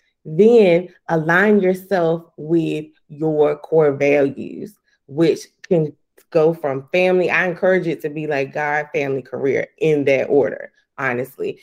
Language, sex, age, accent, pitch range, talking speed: English, female, 30-49, American, 150-180 Hz, 130 wpm